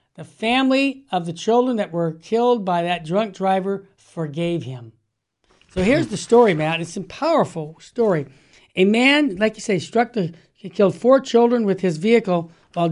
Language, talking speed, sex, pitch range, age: English, 170 wpm, male, 180-235 Hz, 60-79